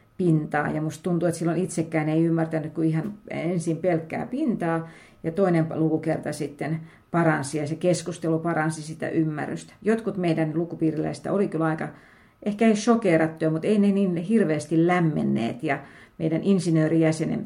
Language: Finnish